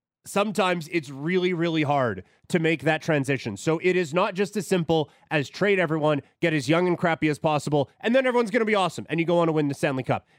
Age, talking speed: 30-49, 245 wpm